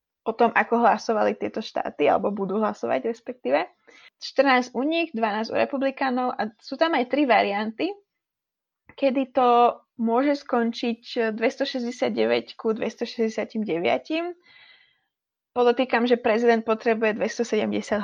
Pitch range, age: 215-260 Hz, 20-39